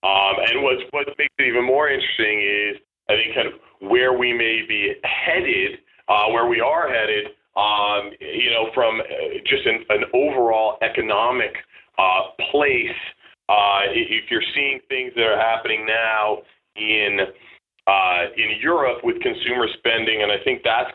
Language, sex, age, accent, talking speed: English, male, 40-59, American, 160 wpm